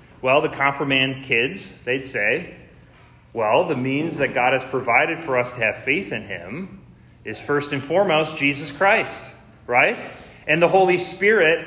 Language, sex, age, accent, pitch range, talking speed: English, male, 30-49, American, 130-175 Hz, 160 wpm